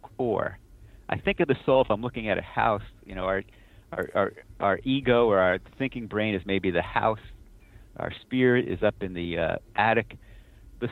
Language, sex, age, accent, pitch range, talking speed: English, male, 50-69, American, 95-125 Hz, 200 wpm